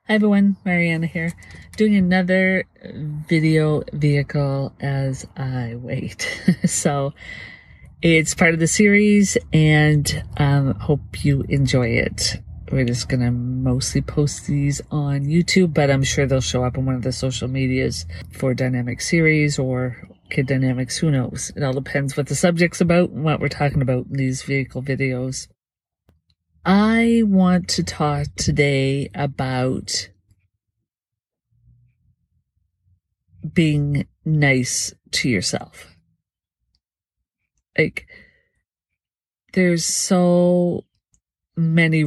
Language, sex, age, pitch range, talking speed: English, female, 50-69, 130-165 Hz, 120 wpm